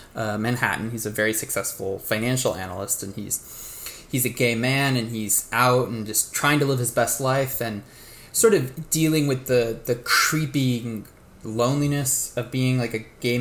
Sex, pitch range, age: male, 110-135 Hz, 20-39